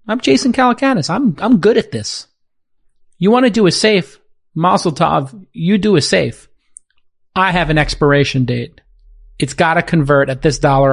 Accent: American